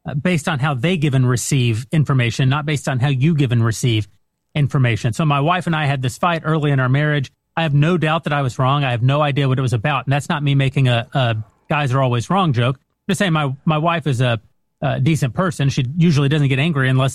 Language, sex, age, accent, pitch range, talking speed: English, male, 30-49, American, 130-165 Hz, 260 wpm